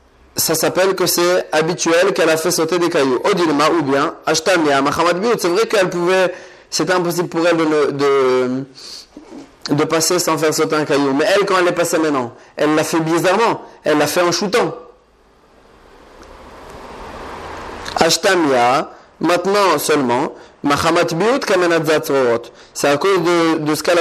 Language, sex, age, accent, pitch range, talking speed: French, male, 30-49, French, 140-175 Hz, 145 wpm